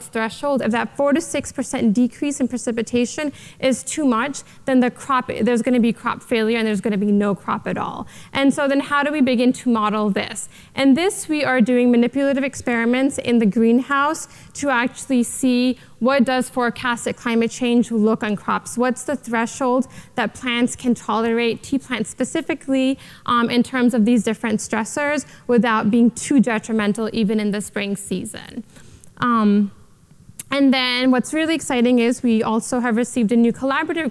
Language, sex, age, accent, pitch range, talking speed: English, female, 20-39, American, 230-275 Hz, 175 wpm